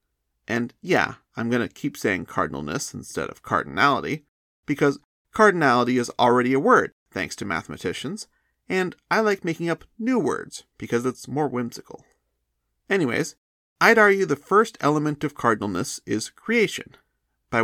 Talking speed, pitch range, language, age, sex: 145 wpm, 110-165 Hz, English, 30-49, male